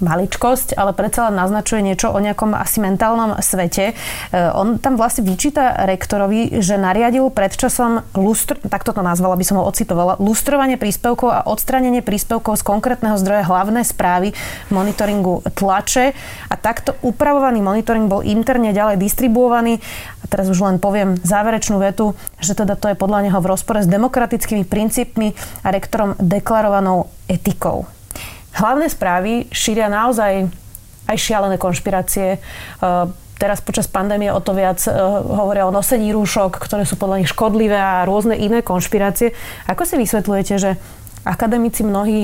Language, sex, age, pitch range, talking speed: Slovak, female, 30-49, 190-225 Hz, 140 wpm